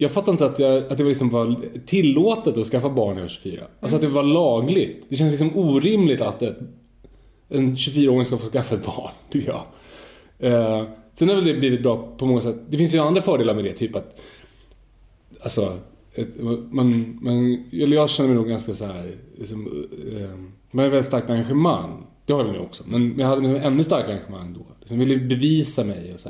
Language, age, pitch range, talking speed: Swedish, 30-49, 110-135 Hz, 210 wpm